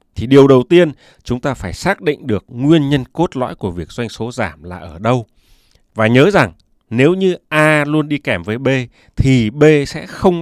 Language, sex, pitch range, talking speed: Vietnamese, male, 105-150 Hz, 215 wpm